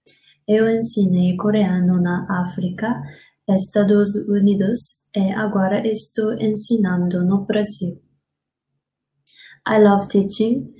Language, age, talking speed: English, 20-39, 90 wpm